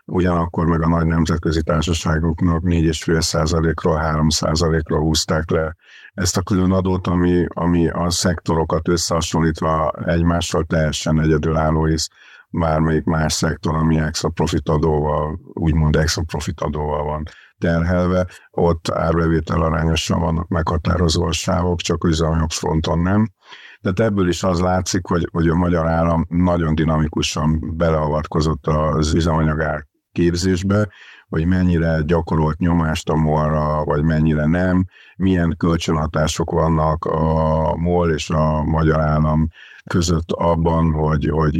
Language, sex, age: Hungarian, male, 50-69